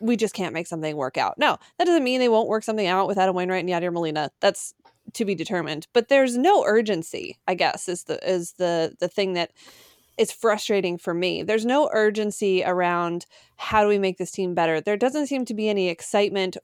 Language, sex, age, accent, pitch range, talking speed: English, female, 20-39, American, 180-225 Hz, 220 wpm